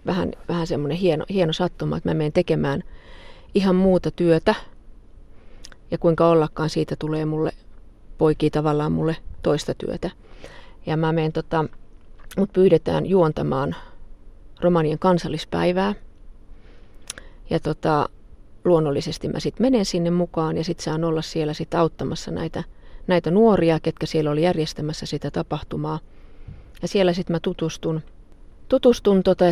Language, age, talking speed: Finnish, 40-59, 130 wpm